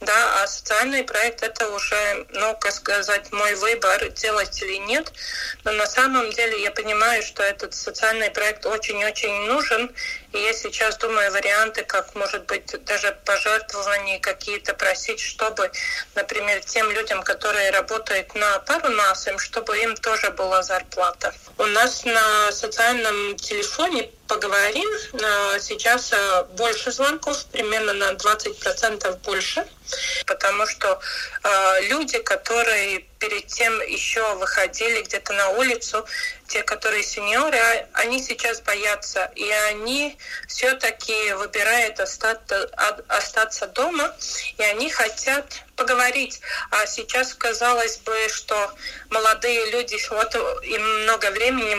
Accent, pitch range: native, 205-240 Hz